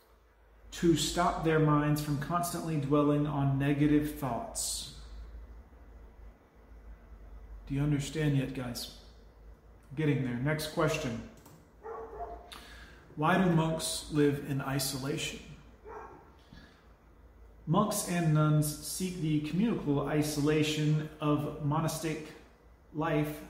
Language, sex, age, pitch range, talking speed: English, male, 30-49, 130-155 Hz, 90 wpm